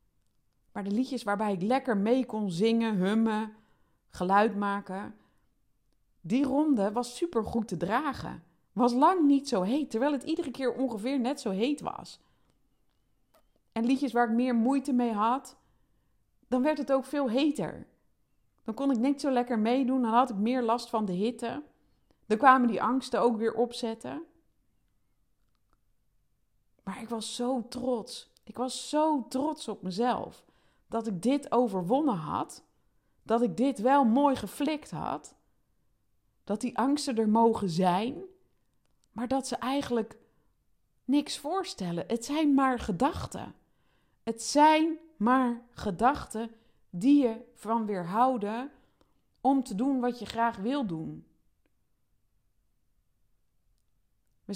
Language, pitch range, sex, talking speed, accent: Dutch, 215-265 Hz, female, 135 wpm, Dutch